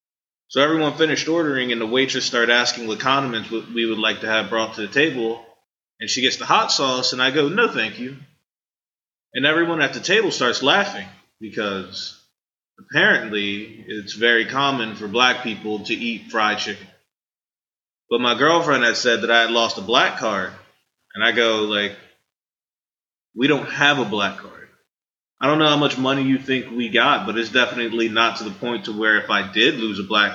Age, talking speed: 20-39, 195 wpm